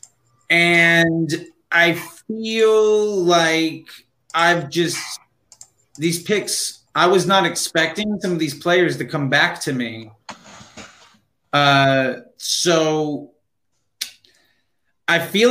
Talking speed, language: 95 wpm, English